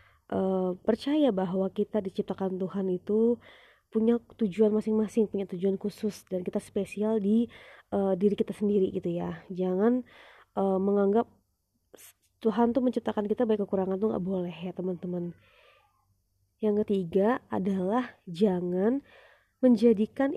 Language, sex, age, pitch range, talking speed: Indonesian, female, 20-39, 190-235 Hz, 125 wpm